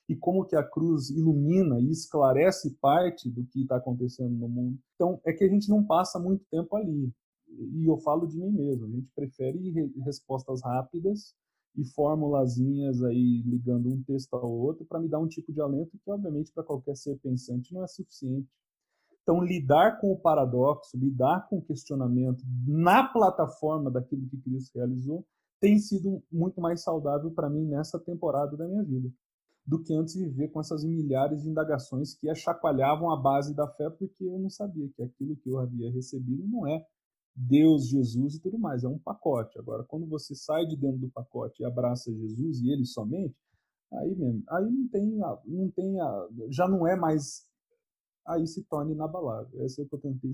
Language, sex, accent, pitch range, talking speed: Portuguese, male, Brazilian, 130-175 Hz, 190 wpm